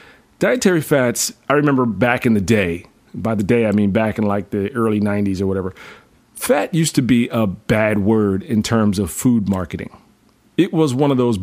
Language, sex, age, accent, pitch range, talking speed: English, male, 30-49, American, 105-140 Hz, 200 wpm